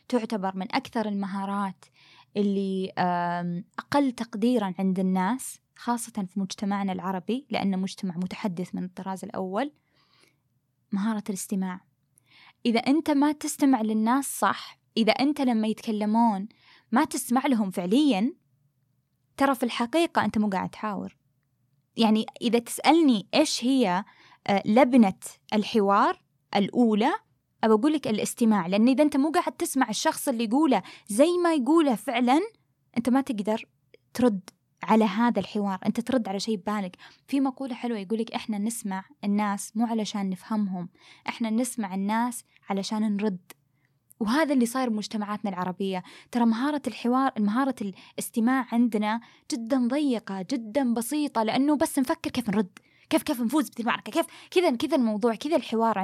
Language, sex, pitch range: Arabic, female, 200-265 Hz